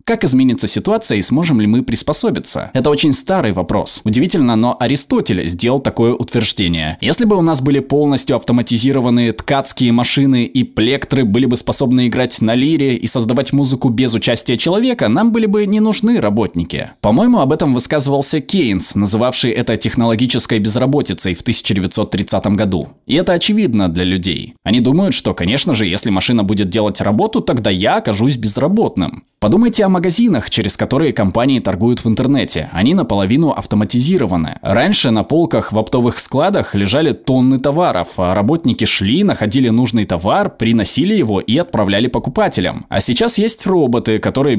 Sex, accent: male, native